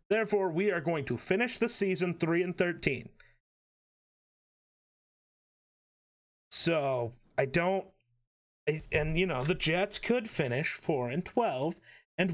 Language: English